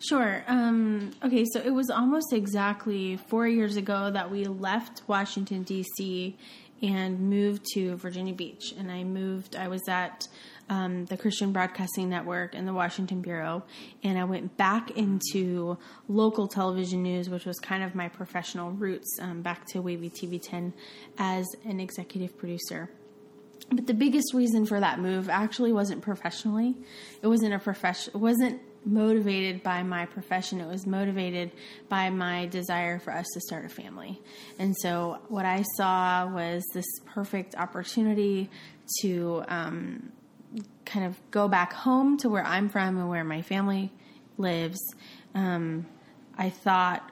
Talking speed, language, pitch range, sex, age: 155 wpm, English, 180-215 Hz, female, 20-39